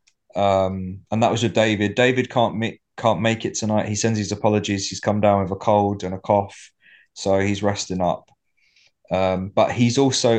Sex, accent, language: male, British, English